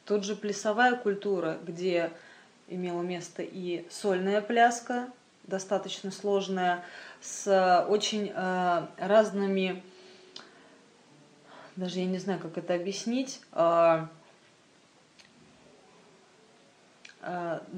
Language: Slovak